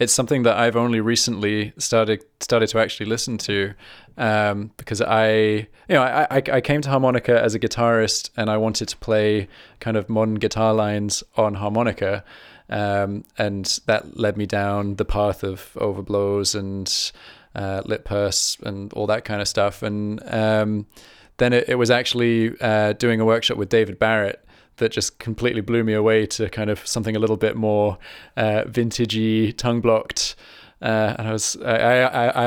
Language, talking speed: English, 175 wpm